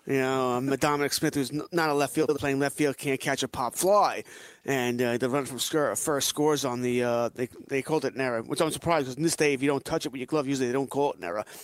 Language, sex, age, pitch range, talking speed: English, male, 30-49, 130-170 Hz, 290 wpm